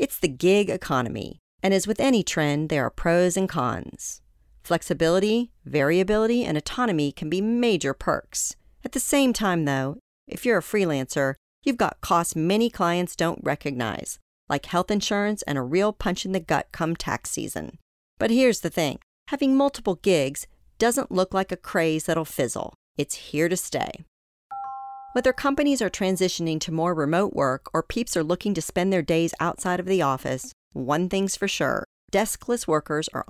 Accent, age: American, 50-69